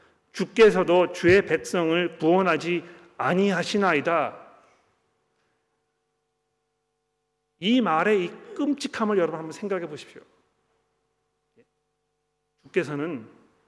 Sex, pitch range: male, 150-180 Hz